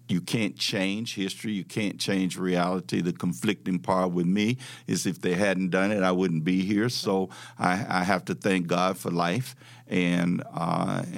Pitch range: 90-100 Hz